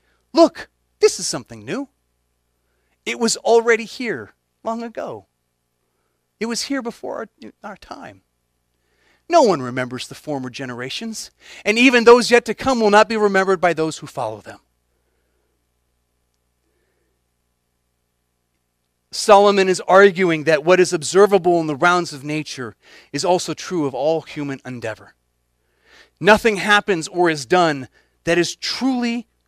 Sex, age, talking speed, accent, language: male, 40-59, 135 wpm, American, English